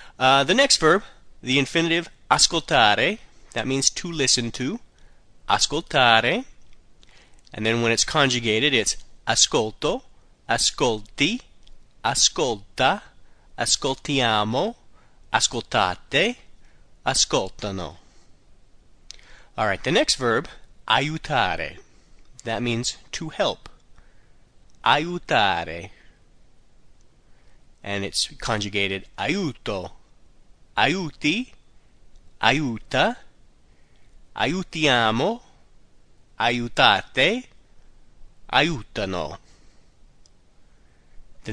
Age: 30-49